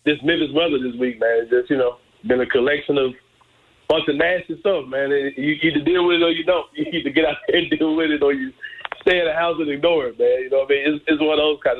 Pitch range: 125-150 Hz